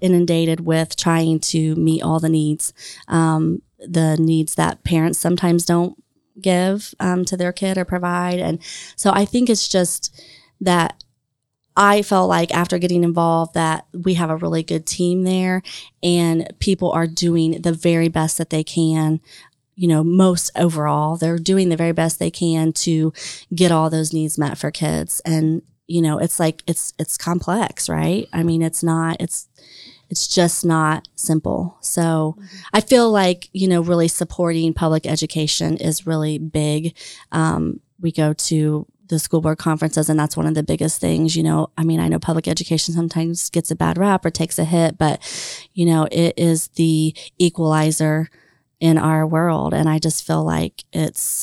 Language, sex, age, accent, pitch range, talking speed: English, female, 30-49, American, 155-175 Hz, 175 wpm